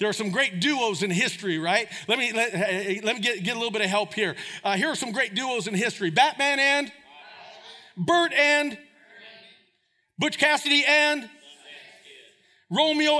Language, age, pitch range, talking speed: English, 40-59, 220-335 Hz, 170 wpm